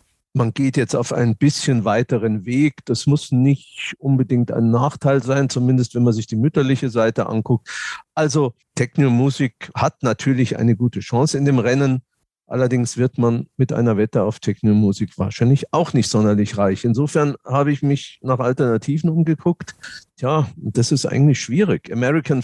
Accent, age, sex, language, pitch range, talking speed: German, 50-69, male, German, 120-150 Hz, 160 wpm